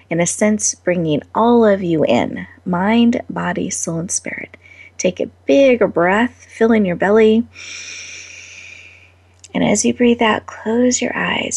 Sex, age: female, 30-49